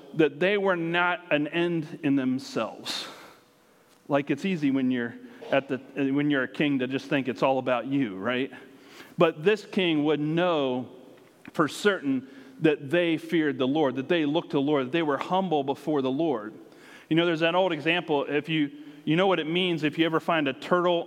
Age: 40-59